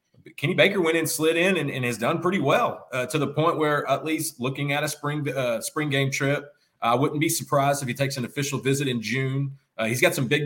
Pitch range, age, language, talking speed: 125-160 Hz, 30-49, English, 250 wpm